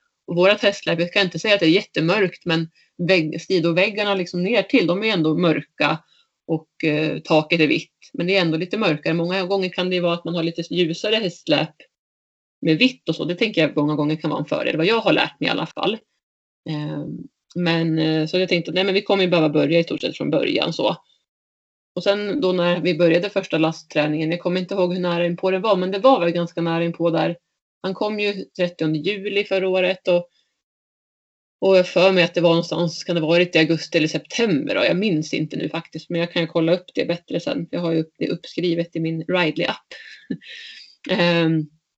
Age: 30-49